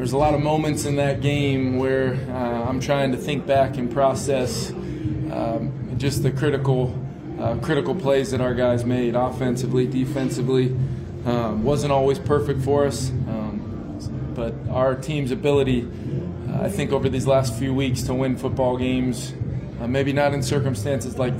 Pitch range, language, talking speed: 125-140 Hz, English, 165 wpm